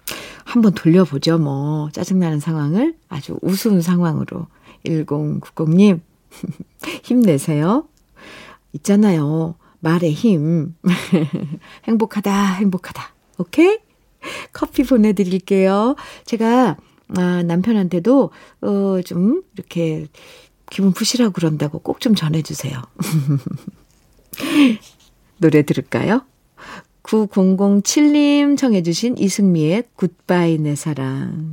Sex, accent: female, native